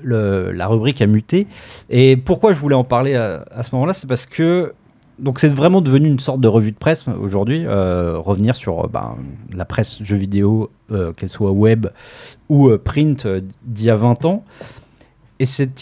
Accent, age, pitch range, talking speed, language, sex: French, 40-59, 110-145 Hz, 205 wpm, French, male